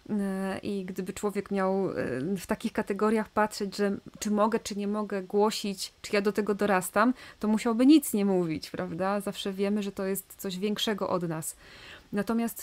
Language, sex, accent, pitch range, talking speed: Polish, female, native, 190-225 Hz, 170 wpm